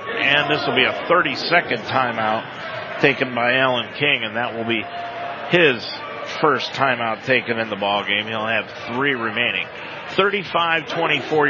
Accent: American